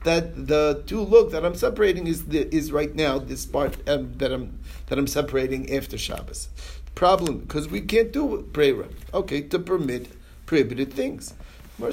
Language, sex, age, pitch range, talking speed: English, male, 50-69, 140-200 Hz, 170 wpm